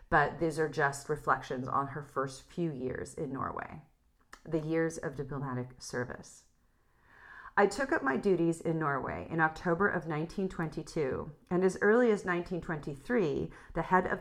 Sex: female